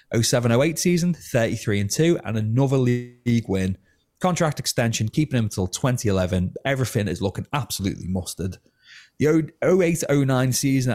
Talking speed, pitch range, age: 115 wpm, 95-125 Hz, 30-49